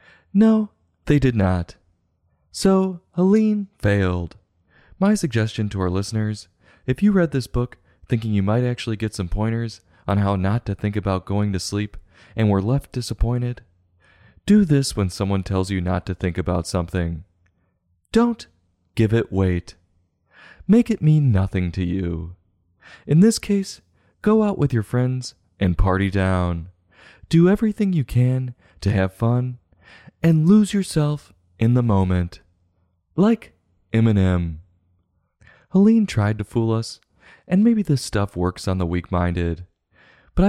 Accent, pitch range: American, 90-130 Hz